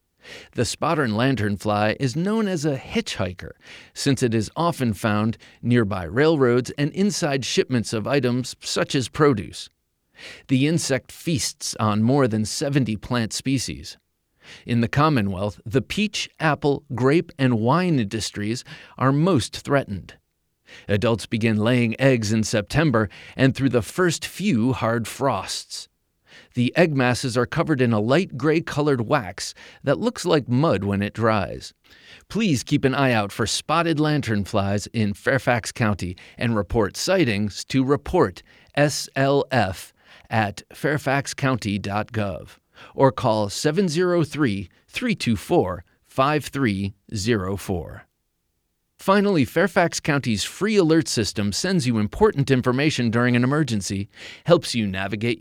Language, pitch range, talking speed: English, 105-145 Hz, 125 wpm